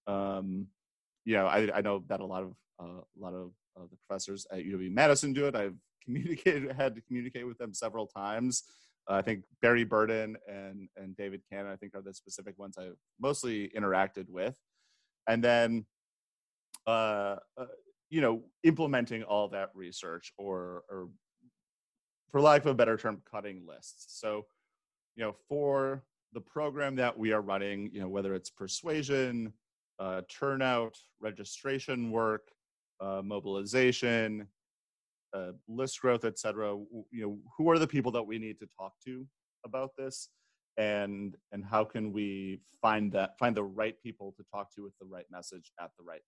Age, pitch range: 30-49, 95-125 Hz